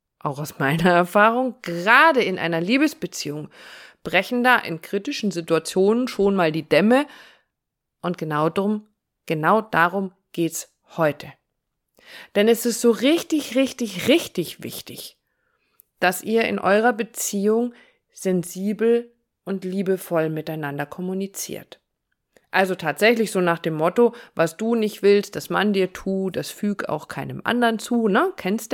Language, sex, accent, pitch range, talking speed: German, female, German, 180-230 Hz, 135 wpm